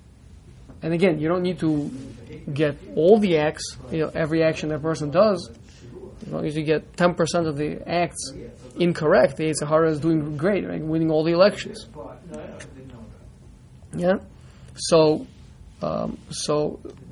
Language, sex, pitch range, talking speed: English, male, 150-190 Hz, 145 wpm